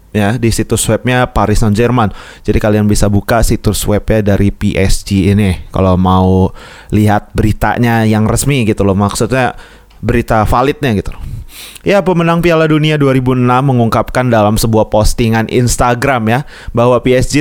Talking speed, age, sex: 145 wpm, 20-39, male